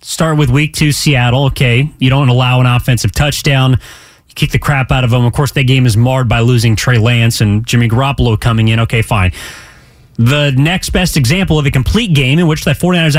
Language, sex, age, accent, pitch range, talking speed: English, male, 30-49, American, 130-175 Hz, 220 wpm